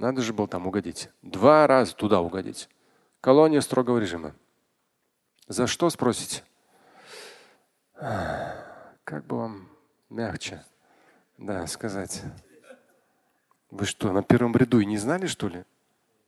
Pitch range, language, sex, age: 105-135 Hz, Russian, male, 40-59